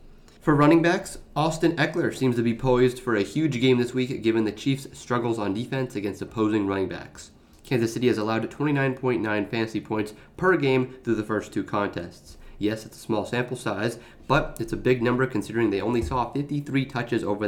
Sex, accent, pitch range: male, American, 105-130 Hz